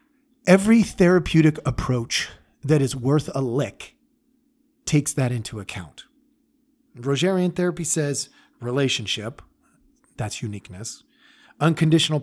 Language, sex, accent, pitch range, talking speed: English, male, American, 130-205 Hz, 95 wpm